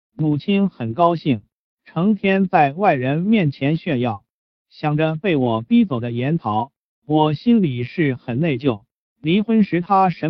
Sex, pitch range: male, 125-180 Hz